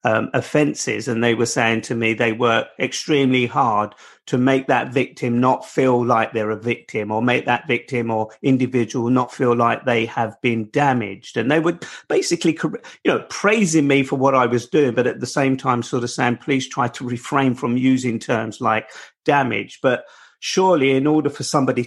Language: English